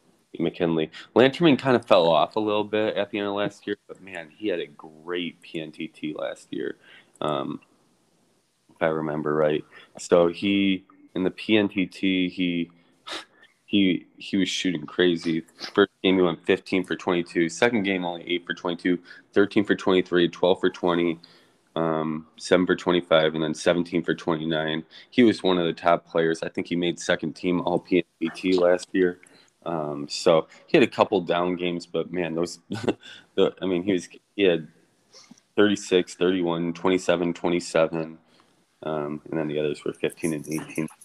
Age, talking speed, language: 20-39, 170 wpm, English